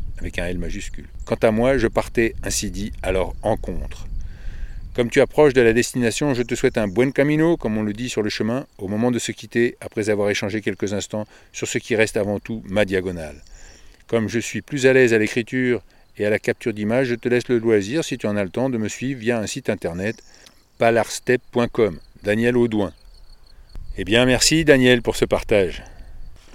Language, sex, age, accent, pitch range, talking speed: French, male, 50-69, French, 105-130 Hz, 210 wpm